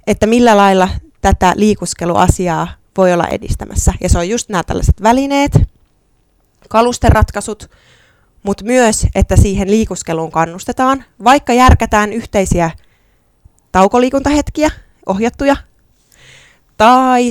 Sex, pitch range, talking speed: female, 170-225 Hz, 95 wpm